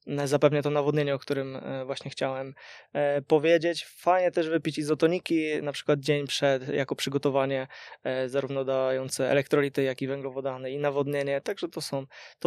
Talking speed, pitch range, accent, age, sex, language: 135 wpm, 135-155 Hz, native, 20-39, male, Polish